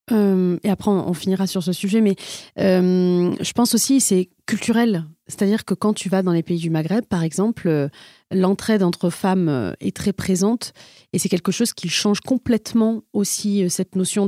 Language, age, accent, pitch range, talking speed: French, 30-49, French, 180-220 Hz, 200 wpm